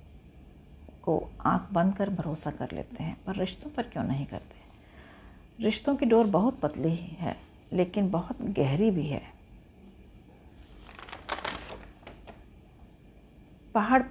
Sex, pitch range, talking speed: female, 165-225 Hz, 110 wpm